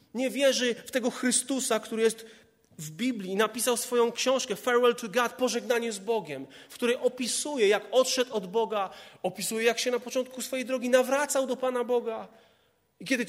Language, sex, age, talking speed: Polish, male, 30-49, 170 wpm